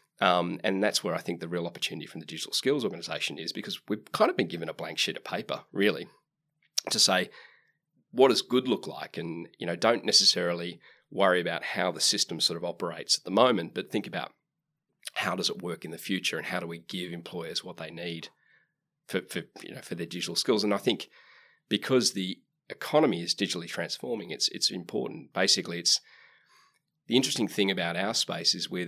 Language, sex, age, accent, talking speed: English, male, 30-49, Australian, 205 wpm